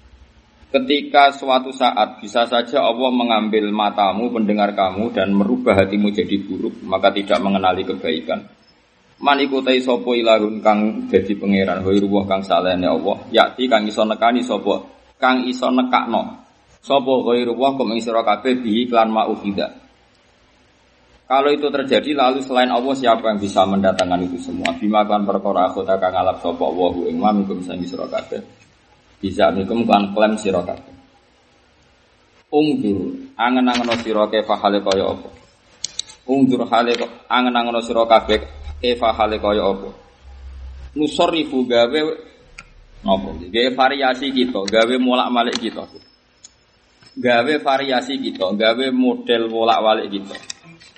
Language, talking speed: Indonesian, 125 wpm